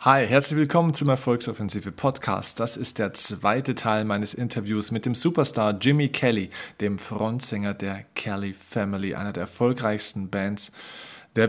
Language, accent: German, German